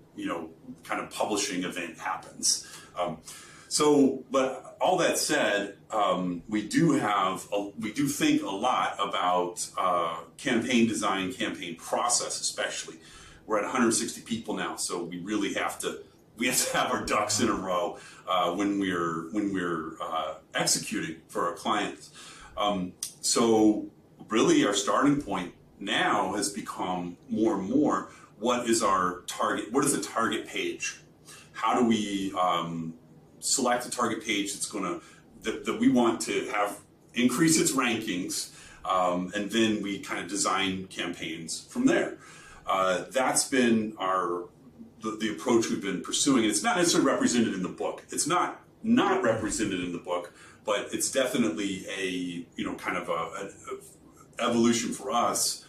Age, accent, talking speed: 40-59, American, 160 wpm